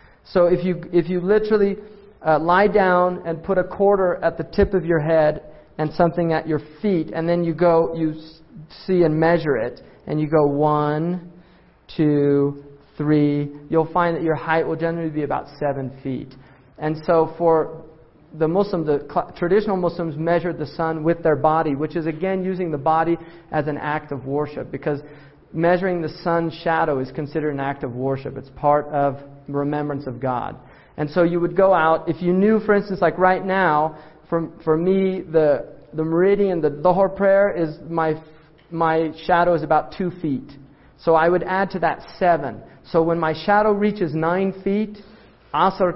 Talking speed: 180 wpm